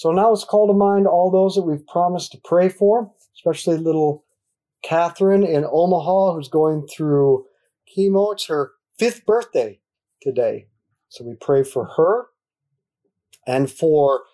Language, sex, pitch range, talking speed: English, male, 145-205 Hz, 145 wpm